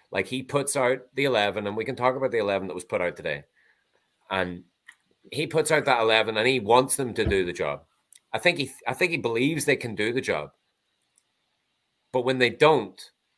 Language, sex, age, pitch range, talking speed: English, male, 30-49, 95-140 Hz, 215 wpm